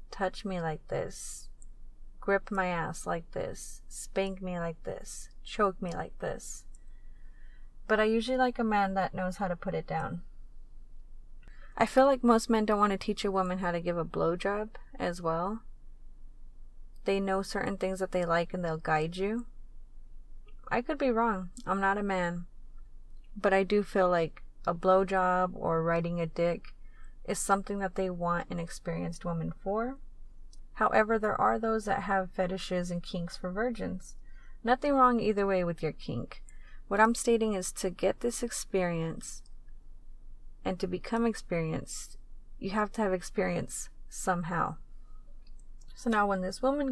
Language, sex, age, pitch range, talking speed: English, female, 30-49, 175-210 Hz, 165 wpm